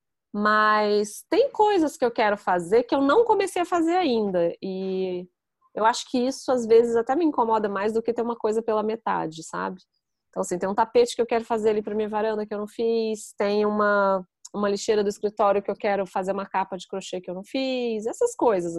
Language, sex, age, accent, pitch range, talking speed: Portuguese, female, 20-39, Brazilian, 190-235 Hz, 225 wpm